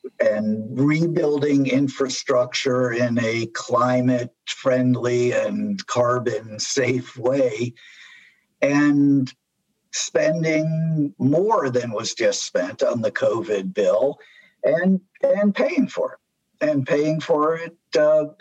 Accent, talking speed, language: American, 100 wpm, English